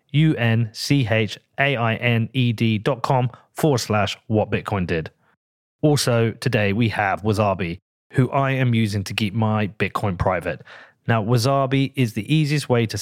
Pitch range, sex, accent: 110-140 Hz, male, British